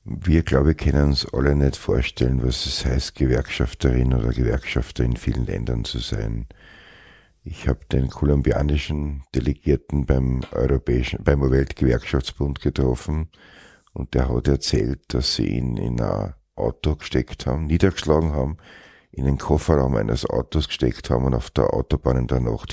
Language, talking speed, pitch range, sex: German, 150 wpm, 65-80 Hz, male